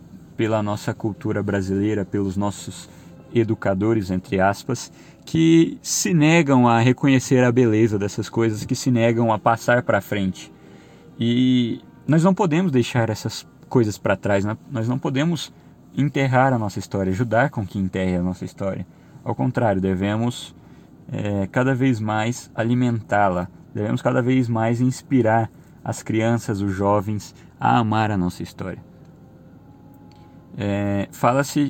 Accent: Brazilian